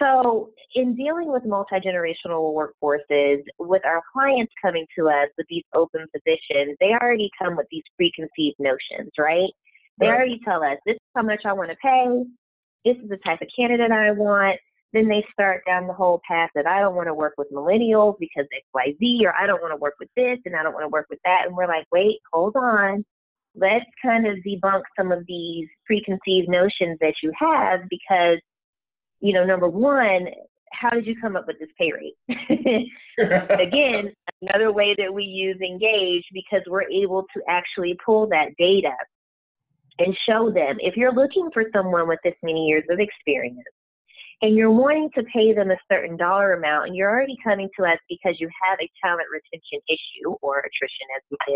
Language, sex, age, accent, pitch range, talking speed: English, female, 20-39, American, 165-225 Hz, 195 wpm